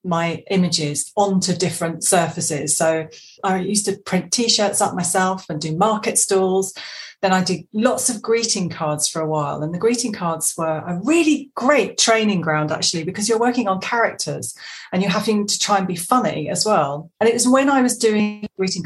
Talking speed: 195 wpm